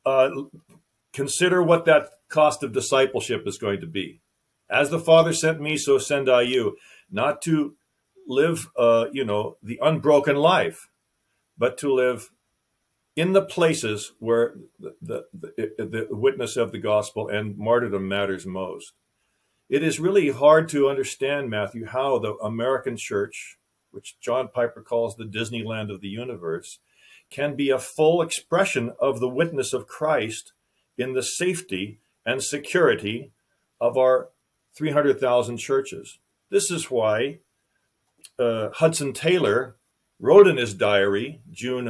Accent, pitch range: American, 115-155 Hz